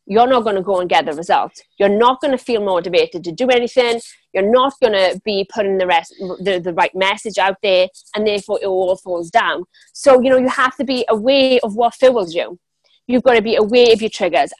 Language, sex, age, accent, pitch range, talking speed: English, female, 30-49, British, 195-255 Hz, 235 wpm